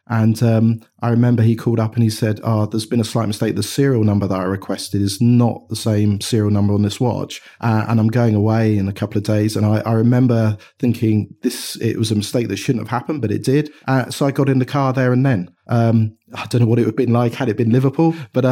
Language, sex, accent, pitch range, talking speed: English, male, British, 110-130 Hz, 270 wpm